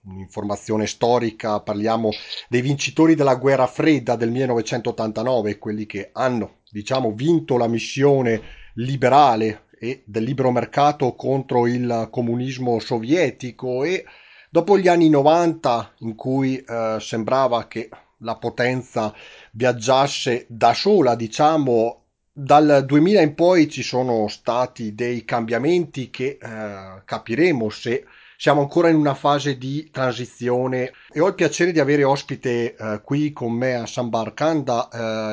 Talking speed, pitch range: 130 wpm, 115-140 Hz